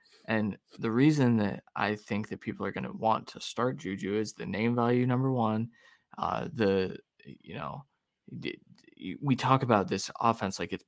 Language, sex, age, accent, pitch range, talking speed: English, male, 20-39, American, 105-125 Hz, 175 wpm